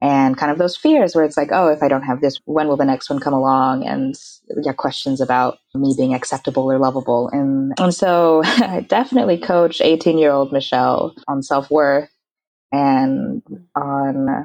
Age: 20-39